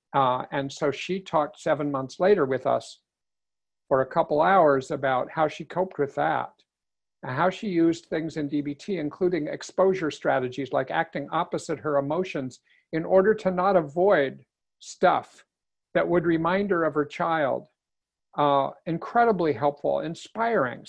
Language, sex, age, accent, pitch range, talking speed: English, male, 60-79, American, 150-200 Hz, 150 wpm